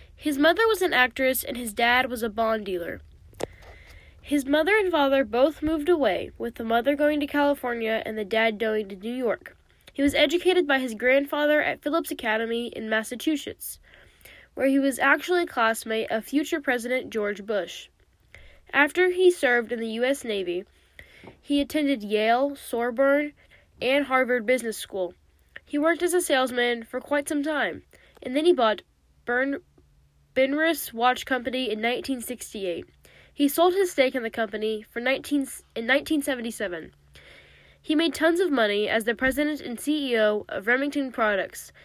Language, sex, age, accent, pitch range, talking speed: English, female, 10-29, American, 230-295 Hz, 160 wpm